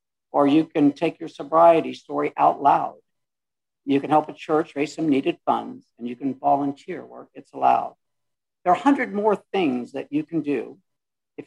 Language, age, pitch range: English, 60-79, 135-170 Hz